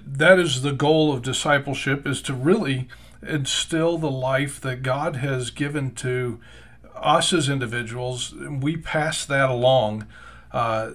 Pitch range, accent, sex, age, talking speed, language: 125-145 Hz, American, male, 40-59, 140 wpm, English